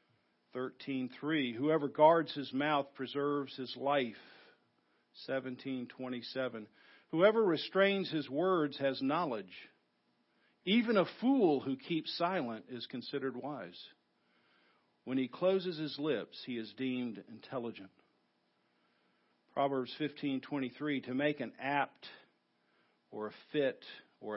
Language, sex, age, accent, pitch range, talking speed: English, male, 50-69, American, 115-155 Hz, 105 wpm